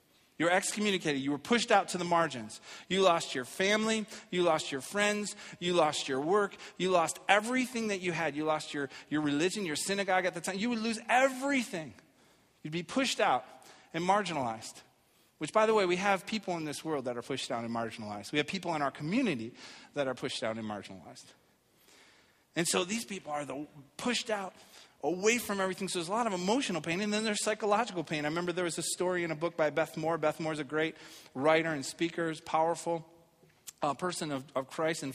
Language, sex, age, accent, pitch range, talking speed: English, male, 30-49, American, 145-195 Hz, 215 wpm